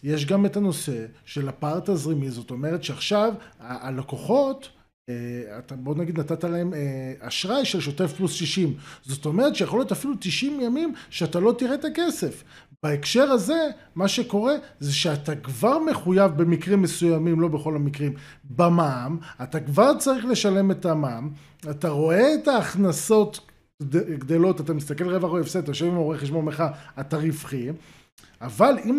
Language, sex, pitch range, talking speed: Hebrew, male, 150-210 Hz, 155 wpm